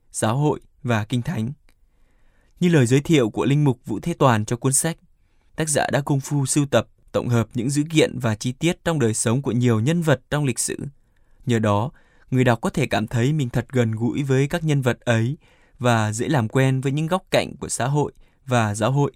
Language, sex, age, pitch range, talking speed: Vietnamese, male, 20-39, 110-140 Hz, 230 wpm